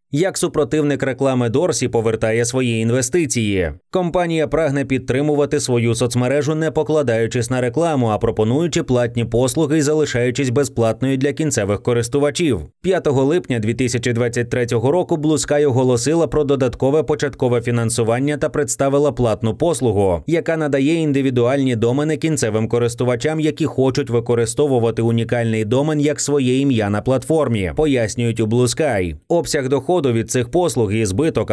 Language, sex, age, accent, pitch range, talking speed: Ukrainian, male, 20-39, native, 115-150 Hz, 120 wpm